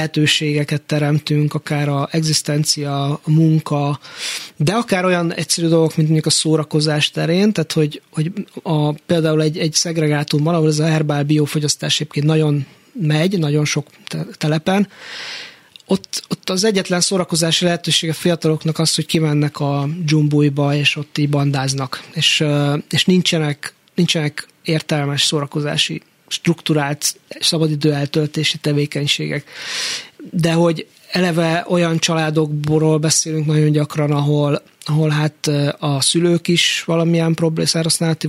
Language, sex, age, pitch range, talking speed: Hungarian, male, 20-39, 150-165 Hz, 125 wpm